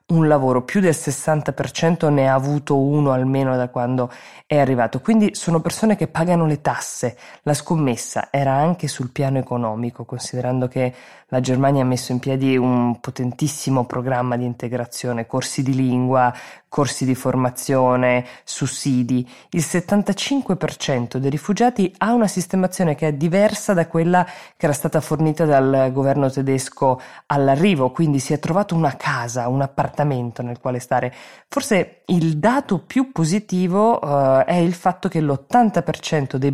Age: 20-39